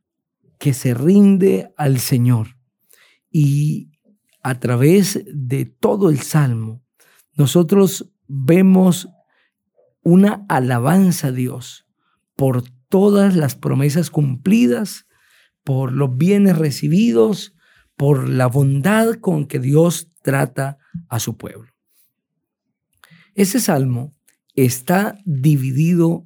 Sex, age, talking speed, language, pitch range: male, 50-69, 95 wpm, Spanish, 130-190 Hz